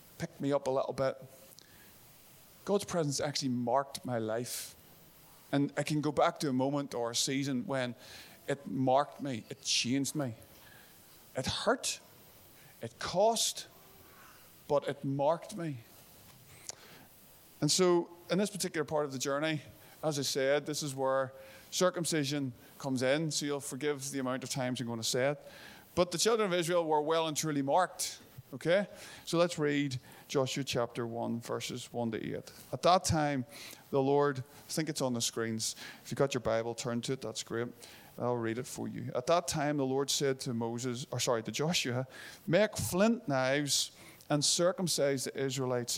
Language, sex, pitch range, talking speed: English, male, 125-155 Hz, 175 wpm